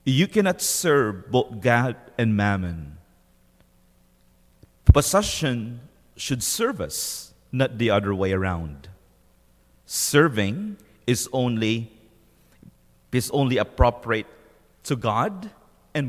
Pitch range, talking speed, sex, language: 90-140 Hz, 95 wpm, male, English